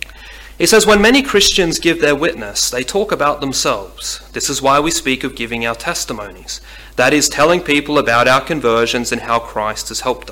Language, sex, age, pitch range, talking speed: English, male, 30-49, 130-175 Hz, 190 wpm